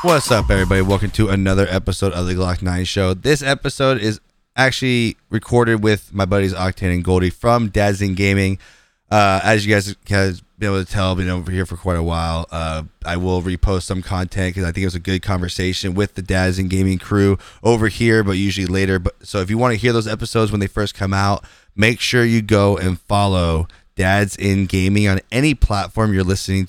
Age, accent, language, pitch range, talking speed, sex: 20-39, American, English, 95-105 Hz, 215 wpm, male